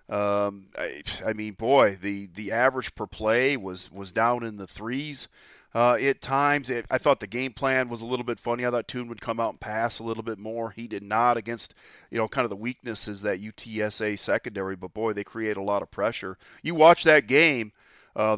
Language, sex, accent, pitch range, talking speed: English, male, American, 105-120 Hz, 225 wpm